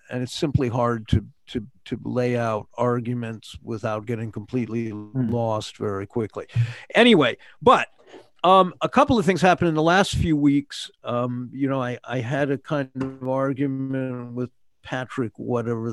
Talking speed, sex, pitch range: 160 wpm, male, 115-135 Hz